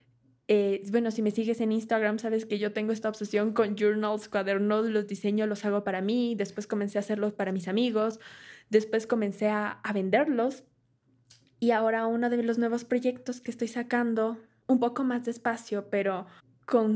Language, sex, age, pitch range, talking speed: Spanish, female, 20-39, 195-230 Hz, 175 wpm